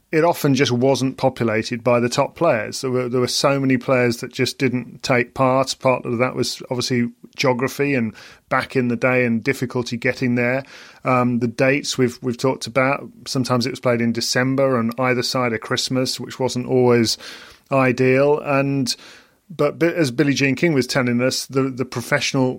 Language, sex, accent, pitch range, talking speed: English, male, British, 120-135 Hz, 185 wpm